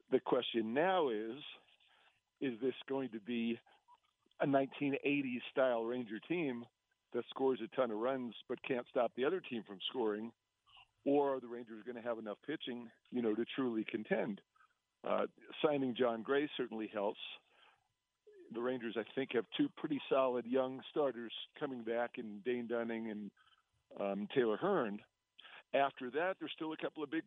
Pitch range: 115-135 Hz